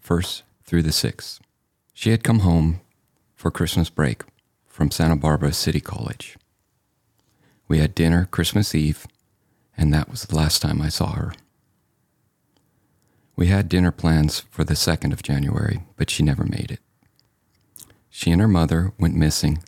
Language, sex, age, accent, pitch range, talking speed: English, male, 40-59, American, 75-95 Hz, 150 wpm